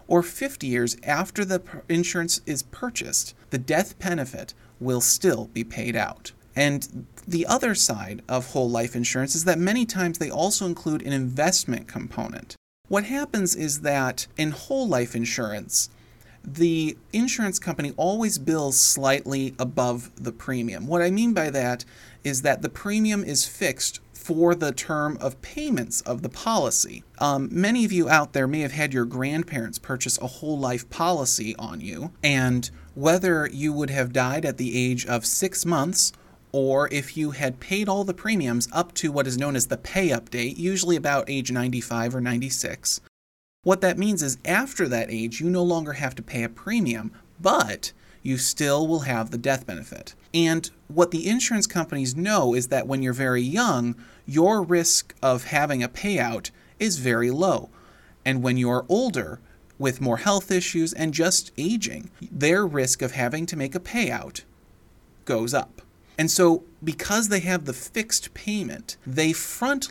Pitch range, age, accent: 125-175 Hz, 30-49, American